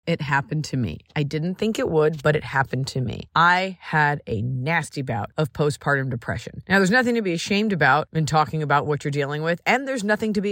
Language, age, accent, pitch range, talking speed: English, 30-49, American, 145-190 Hz, 235 wpm